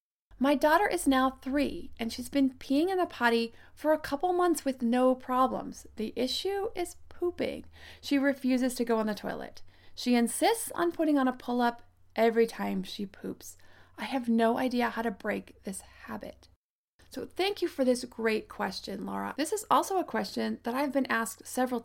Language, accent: English, American